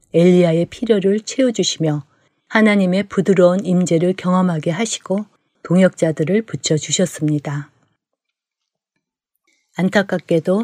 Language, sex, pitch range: Korean, female, 160-195 Hz